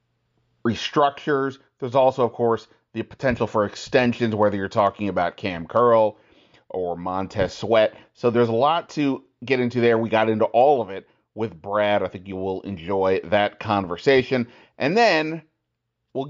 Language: English